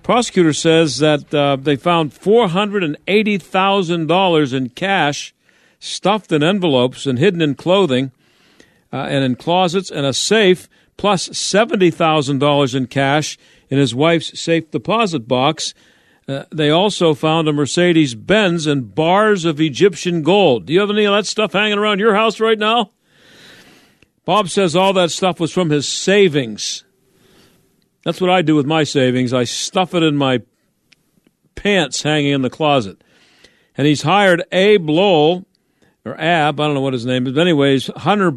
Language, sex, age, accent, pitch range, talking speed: English, male, 50-69, American, 140-185 Hz, 160 wpm